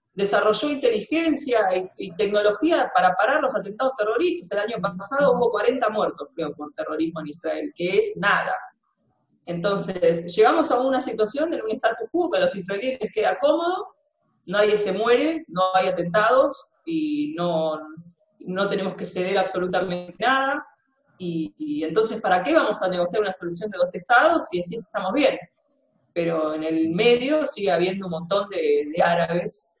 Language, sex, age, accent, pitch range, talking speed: Spanish, female, 30-49, Argentinian, 165-240 Hz, 165 wpm